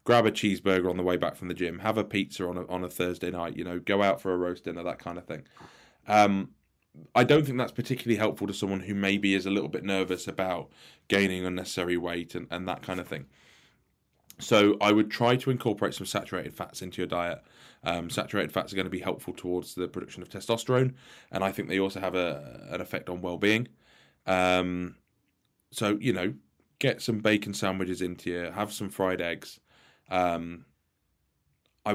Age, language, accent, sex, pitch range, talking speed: 20-39, English, British, male, 90-105 Hz, 205 wpm